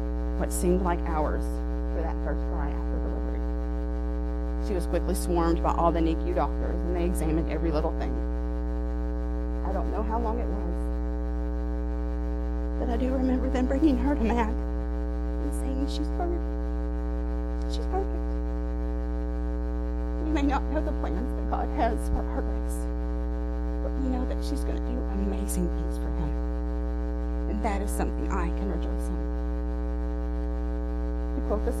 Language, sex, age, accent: English, female, 40-59, American